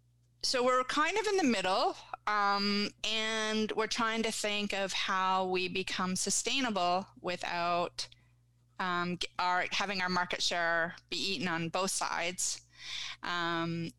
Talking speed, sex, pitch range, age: 135 wpm, female, 170-205 Hz, 30-49